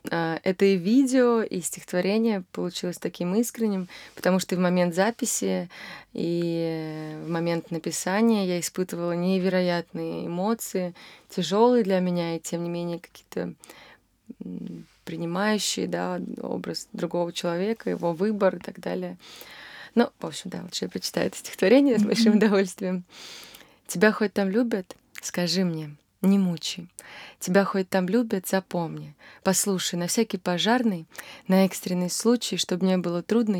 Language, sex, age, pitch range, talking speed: Russian, female, 20-39, 175-215 Hz, 130 wpm